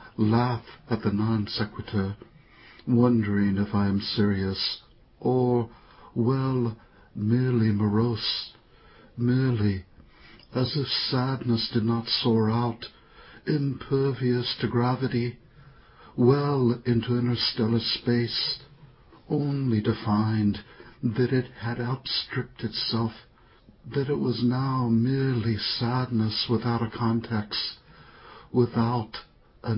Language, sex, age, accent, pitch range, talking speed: English, male, 60-79, American, 110-125 Hz, 95 wpm